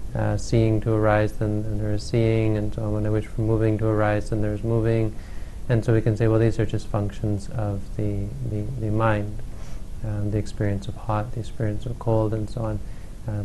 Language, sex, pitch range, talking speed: English, male, 105-115 Hz, 220 wpm